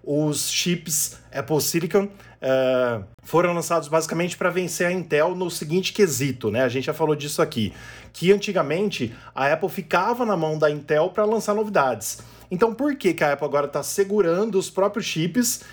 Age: 20-39